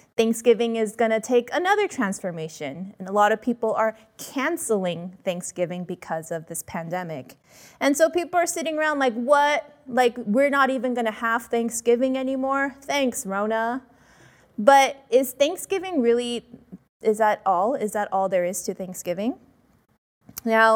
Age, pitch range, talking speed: 20-39, 185-245 Hz, 145 wpm